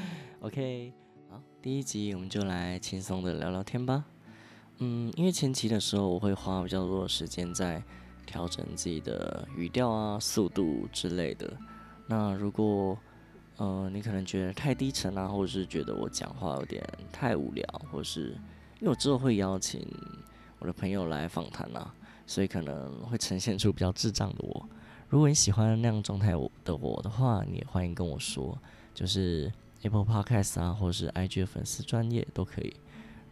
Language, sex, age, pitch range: Chinese, male, 20-39, 90-115 Hz